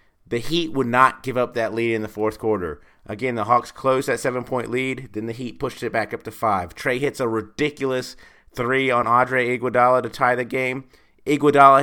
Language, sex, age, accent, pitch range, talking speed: English, male, 30-49, American, 110-125 Hz, 210 wpm